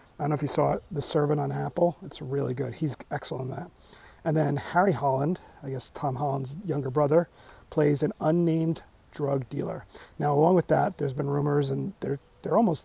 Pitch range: 135-155 Hz